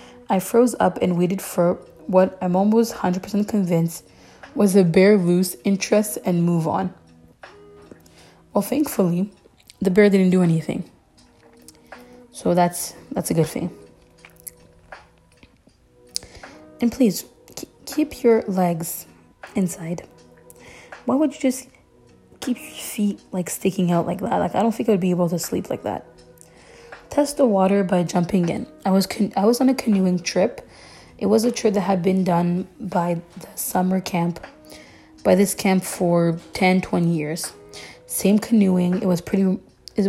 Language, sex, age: English, female, 20-39